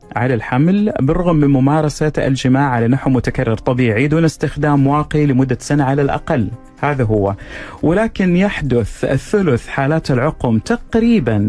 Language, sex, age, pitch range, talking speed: Arabic, male, 40-59, 125-160 Hz, 125 wpm